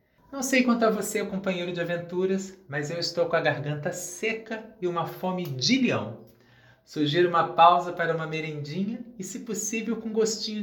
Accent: Brazilian